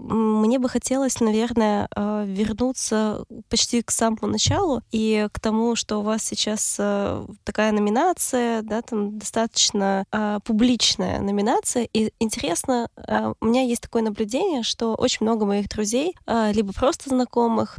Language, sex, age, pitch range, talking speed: Russian, female, 20-39, 210-245 Hz, 130 wpm